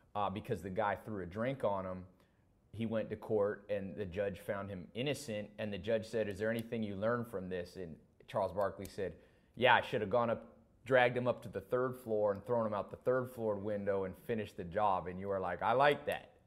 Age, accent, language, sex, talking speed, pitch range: 30-49, American, English, male, 240 wpm, 90-110 Hz